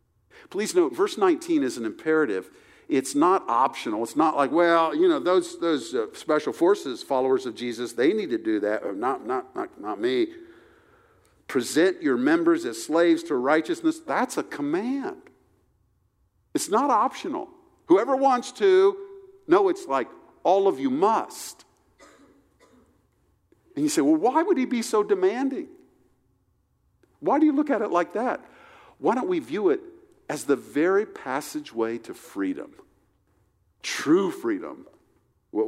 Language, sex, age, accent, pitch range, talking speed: English, male, 50-69, American, 280-370 Hz, 150 wpm